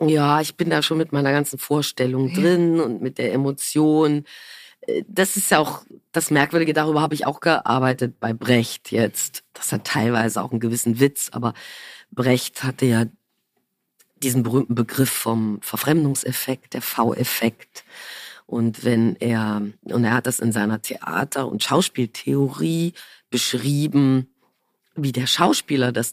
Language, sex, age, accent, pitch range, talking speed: German, female, 40-59, German, 115-155 Hz, 145 wpm